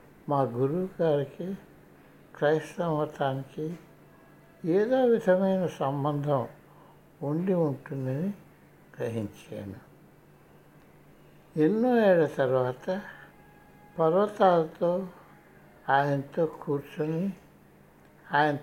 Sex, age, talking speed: male, 60-79, 60 wpm